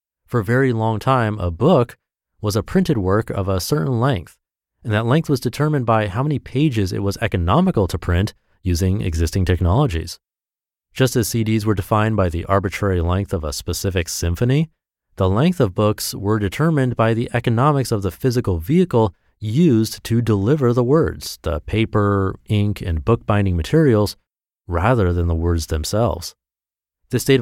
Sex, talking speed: male, 165 wpm